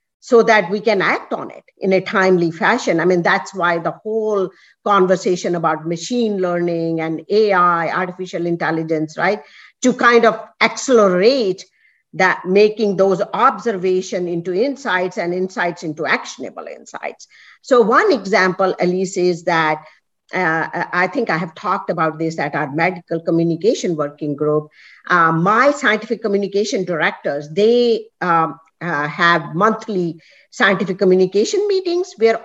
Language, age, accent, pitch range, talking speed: English, 50-69, Indian, 170-220 Hz, 140 wpm